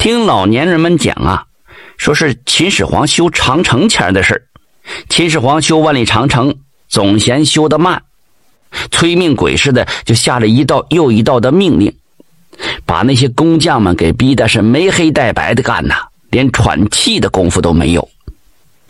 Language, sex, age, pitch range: Chinese, male, 50-69, 115-145 Hz